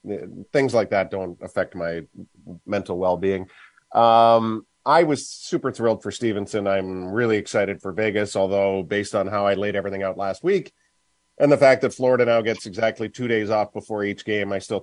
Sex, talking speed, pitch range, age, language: male, 180 wpm, 95-115 Hz, 40-59, English